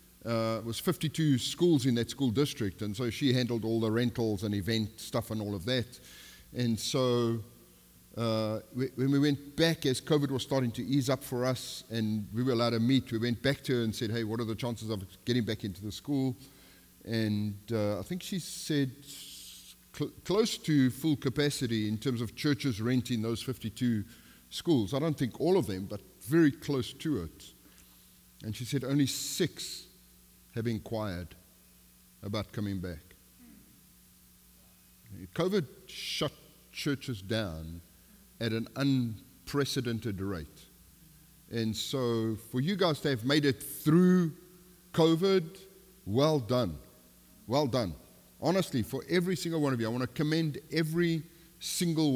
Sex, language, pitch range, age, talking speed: male, English, 110-150 Hz, 50-69, 160 wpm